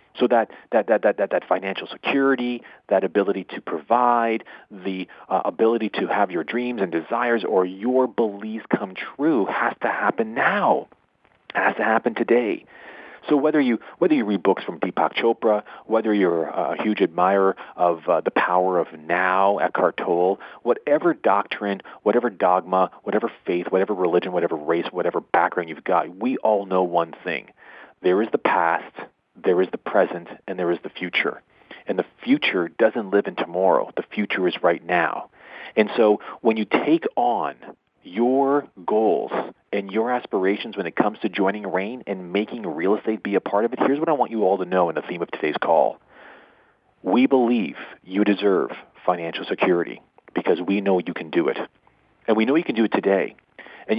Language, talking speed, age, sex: English, 185 wpm, 40-59, male